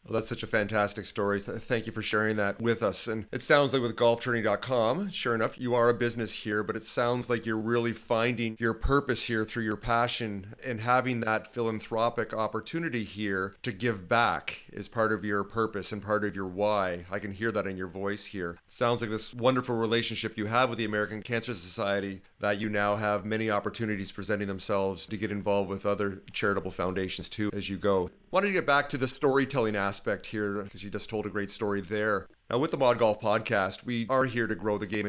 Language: English